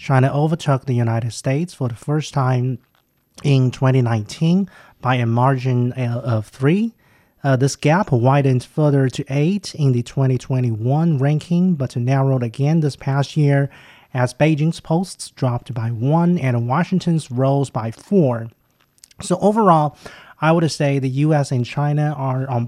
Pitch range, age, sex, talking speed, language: 130-160 Hz, 30-49, male, 145 wpm, English